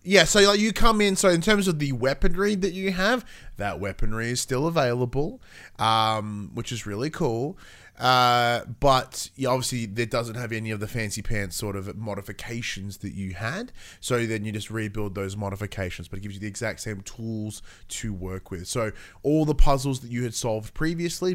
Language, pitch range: English, 105-145 Hz